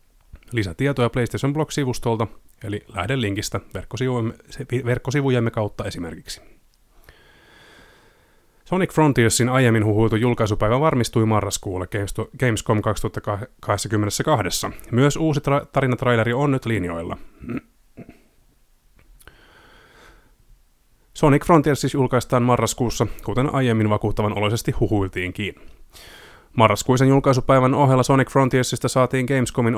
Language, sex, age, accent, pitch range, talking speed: Finnish, male, 30-49, native, 105-130 Hz, 90 wpm